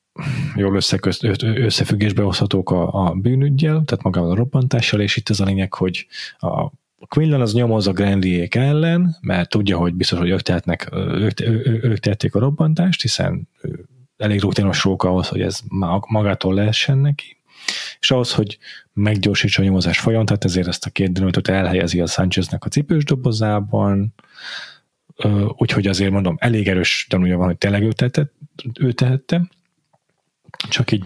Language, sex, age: Hungarian, male, 30-49